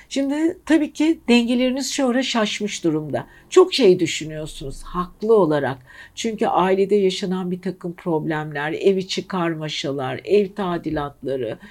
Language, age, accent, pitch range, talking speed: Turkish, 60-79, native, 170-235 Hz, 115 wpm